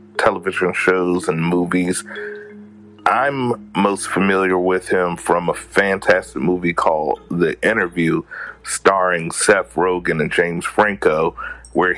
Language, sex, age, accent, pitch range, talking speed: English, male, 30-49, American, 85-95 Hz, 115 wpm